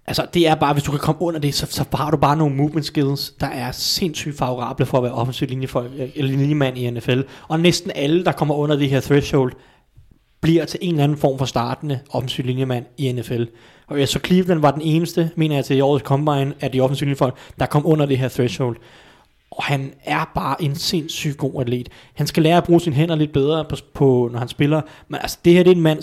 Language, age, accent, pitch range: Danish, 30-49, native, 130-155 Hz